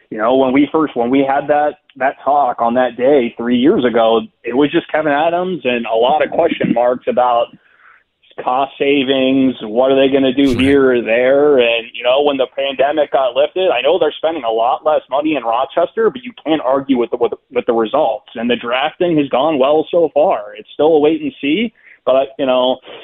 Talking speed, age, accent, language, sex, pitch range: 220 wpm, 20-39, American, English, male, 120-145 Hz